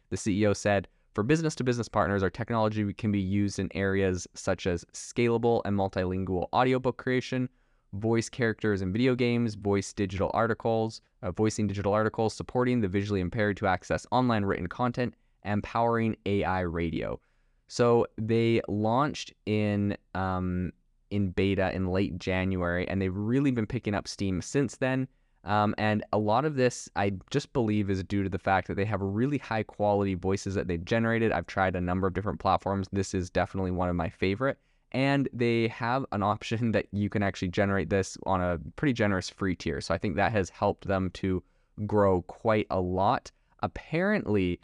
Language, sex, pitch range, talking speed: English, male, 95-115 Hz, 175 wpm